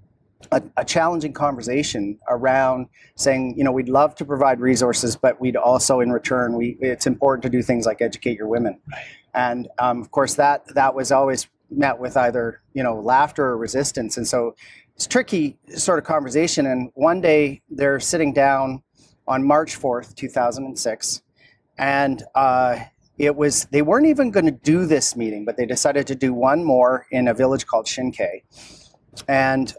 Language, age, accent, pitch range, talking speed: English, 40-59, American, 120-145 Hz, 175 wpm